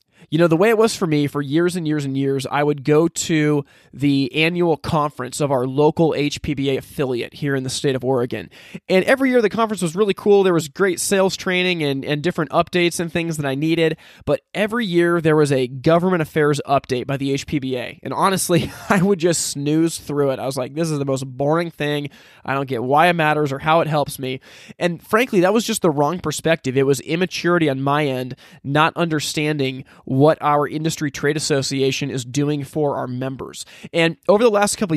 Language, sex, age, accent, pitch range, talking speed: English, male, 20-39, American, 140-170 Hz, 215 wpm